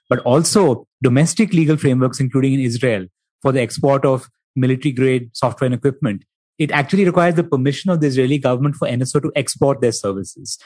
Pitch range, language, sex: 130-160 Hz, English, male